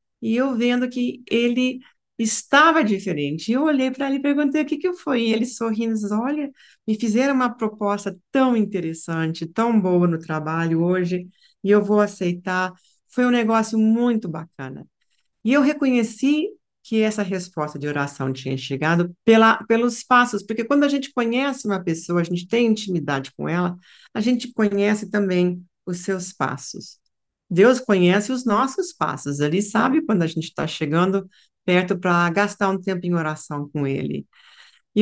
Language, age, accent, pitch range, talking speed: Portuguese, 40-59, Brazilian, 170-230 Hz, 165 wpm